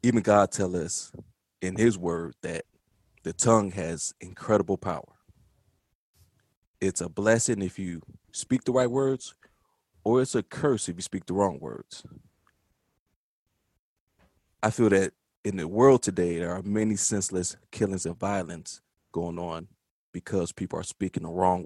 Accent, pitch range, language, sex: American, 90-115 Hz, English, male